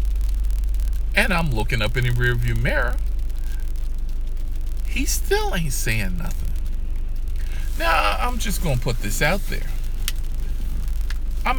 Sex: male